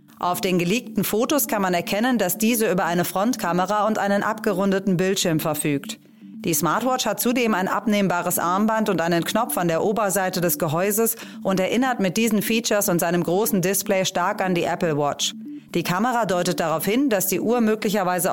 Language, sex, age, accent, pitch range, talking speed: German, female, 30-49, German, 170-220 Hz, 180 wpm